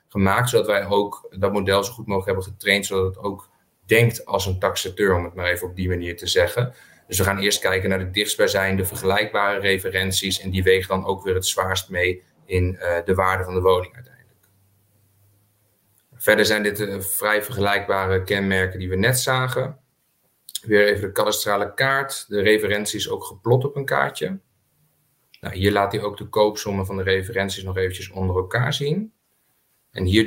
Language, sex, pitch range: Dutch, male, 95-105 Hz